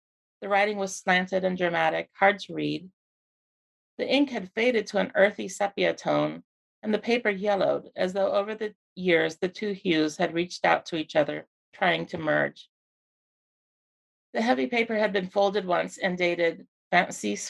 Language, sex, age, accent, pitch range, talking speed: English, female, 40-59, American, 170-210 Hz, 170 wpm